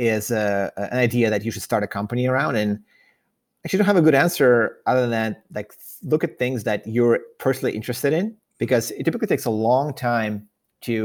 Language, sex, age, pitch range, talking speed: English, male, 30-49, 105-125 Hz, 200 wpm